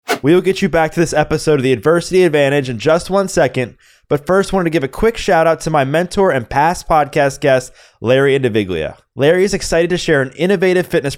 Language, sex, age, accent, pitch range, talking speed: English, male, 20-39, American, 130-170 Hz, 230 wpm